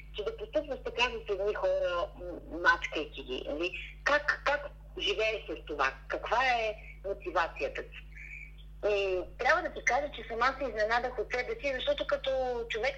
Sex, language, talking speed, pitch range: female, Bulgarian, 160 wpm, 180-275 Hz